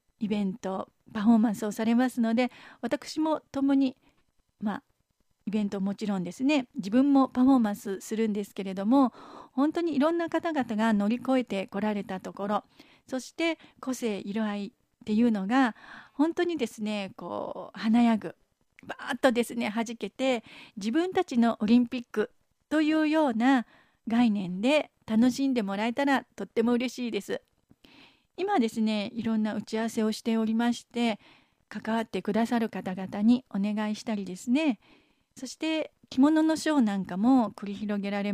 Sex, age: female, 40-59